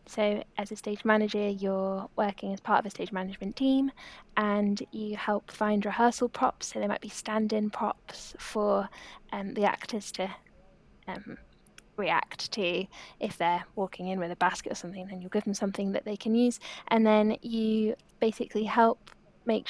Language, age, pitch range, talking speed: English, 10-29, 205-235 Hz, 175 wpm